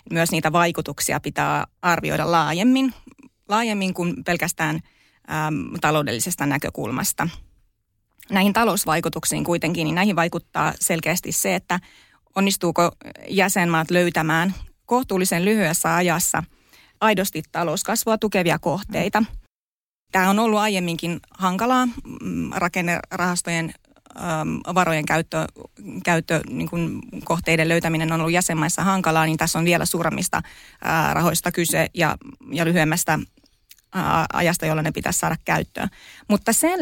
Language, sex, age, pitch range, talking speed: Finnish, female, 30-49, 160-195 Hz, 105 wpm